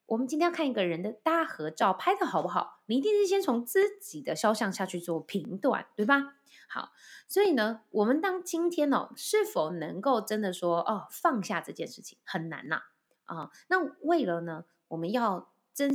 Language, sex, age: Chinese, female, 20-39